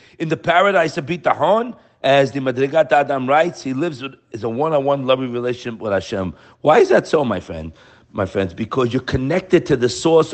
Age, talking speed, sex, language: 50-69, 205 wpm, male, English